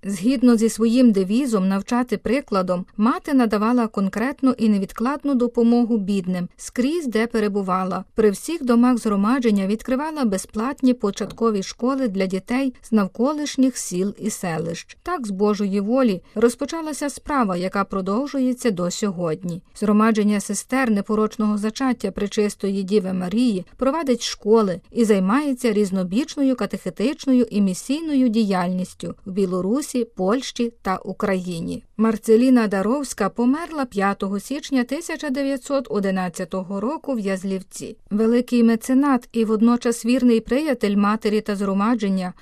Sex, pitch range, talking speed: female, 195-250 Hz, 115 wpm